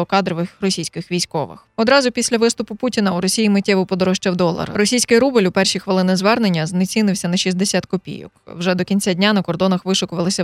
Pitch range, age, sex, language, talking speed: 180-215 Hz, 20-39, female, Ukrainian, 165 wpm